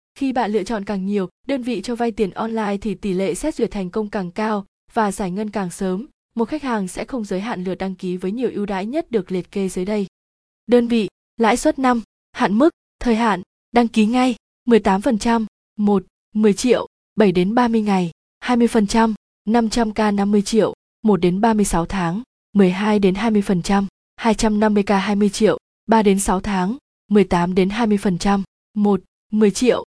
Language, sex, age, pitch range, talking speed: Vietnamese, female, 20-39, 195-230 Hz, 180 wpm